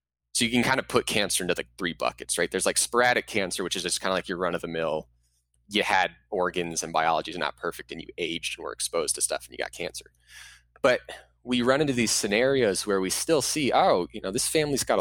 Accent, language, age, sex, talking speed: American, English, 20-39, male, 250 wpm